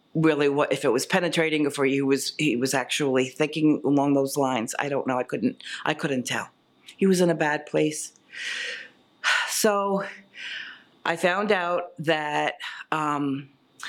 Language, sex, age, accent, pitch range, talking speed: English, female, 40-59, American, 145-175 Hz, 155 wpm